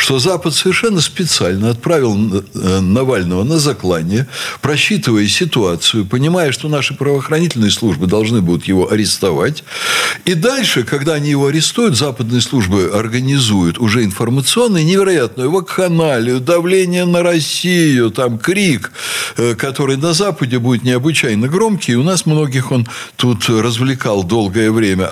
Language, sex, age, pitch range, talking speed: Russian, male, 60-79, 110-155 Hz, 120 wpm